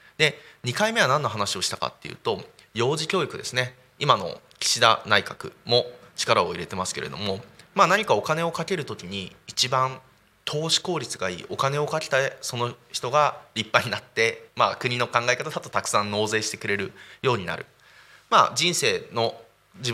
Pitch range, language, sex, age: 110-145 Hz, Japanese, male, 20-39